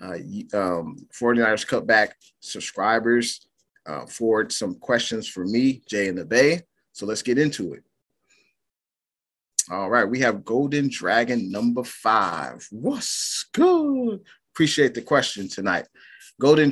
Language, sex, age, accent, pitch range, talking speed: English, male, 30-49, American, 100-135 Hz, 130 wpm